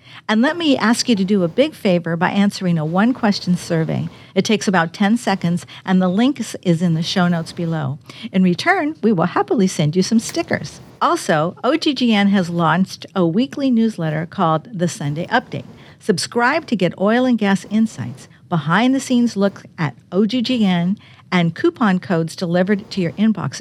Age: 50-69